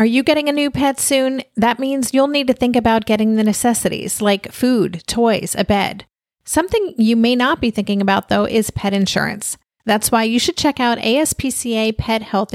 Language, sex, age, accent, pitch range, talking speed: English, female, 40-59, American, 210-255 Hz, 200 wpm